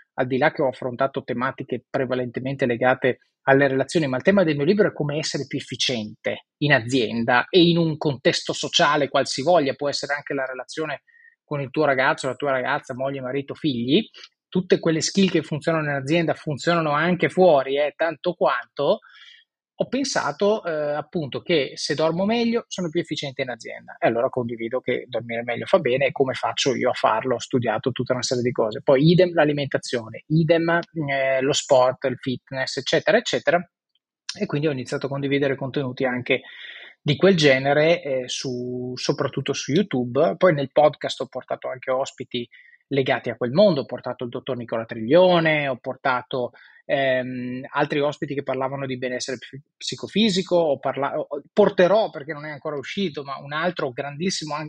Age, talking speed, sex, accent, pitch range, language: 20-39, 175 wpm, male, native, 130-165 Hz, Italian